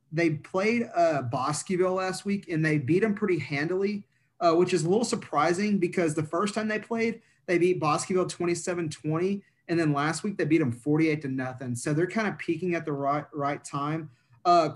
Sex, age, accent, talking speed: male, 30-49, American, 200 wpm